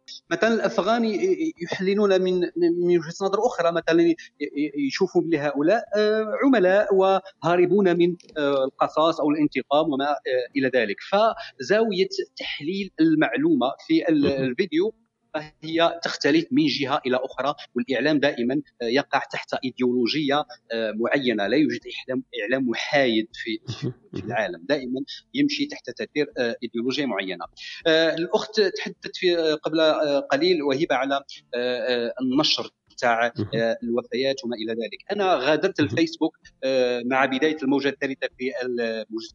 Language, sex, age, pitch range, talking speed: Arabic, male, 40-59, 125-180 Hz, 105 wpm